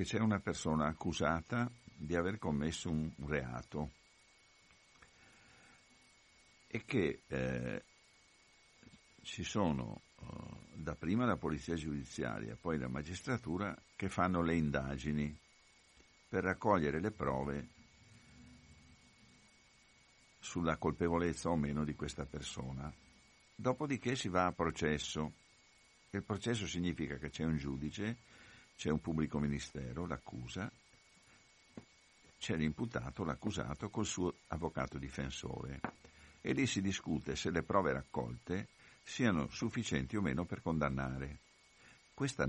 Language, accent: Italian, native